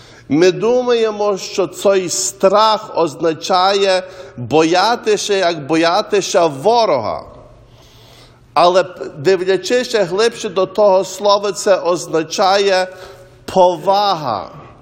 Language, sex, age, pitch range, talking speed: English, male, 50-69, 175-210 Hz, 80 wpm